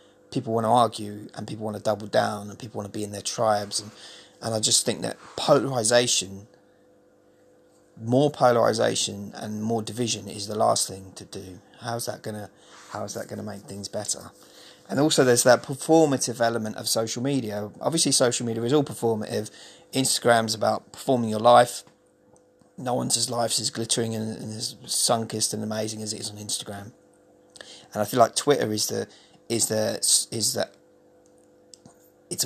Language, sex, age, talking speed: English, male, 30-49, 175 wpm